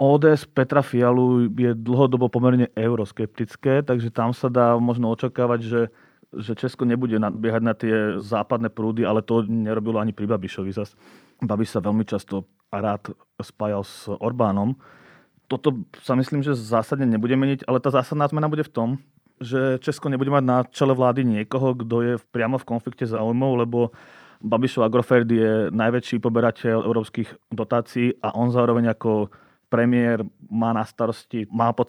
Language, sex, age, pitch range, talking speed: Slovak, male, 30-49, 110-125 Hz, 155 wpm